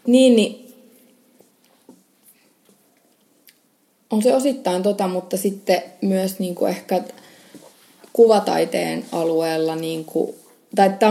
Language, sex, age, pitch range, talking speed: English, female, 20-39, 175-205 Hz, 80 wpm